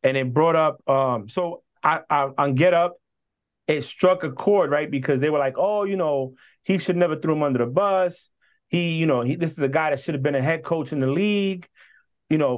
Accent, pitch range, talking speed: American, 135-170 Hz, 245 wpm